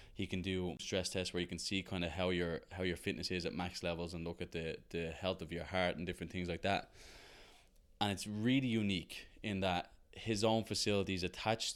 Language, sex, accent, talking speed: English, male, Irish, 230 wpm